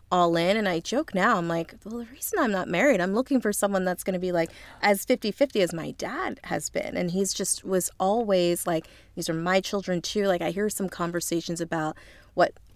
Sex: female